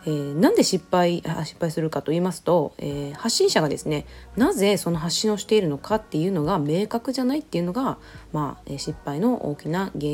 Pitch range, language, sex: 150-215 Hz, Japanese, female